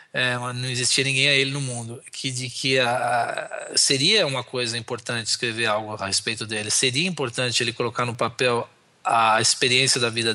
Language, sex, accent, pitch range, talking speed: Portuguese, male, Brazilian, 120-150 Hz, 185 wpm